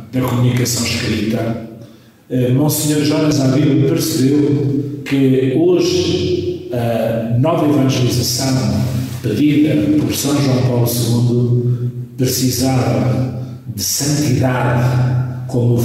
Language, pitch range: Portuguese, 120-130 Hz